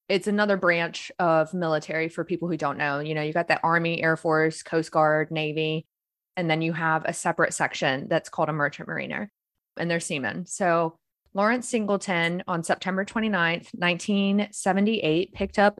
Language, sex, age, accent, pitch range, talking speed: English, female, 20-39, American, 165-200 Hz, 170 wpm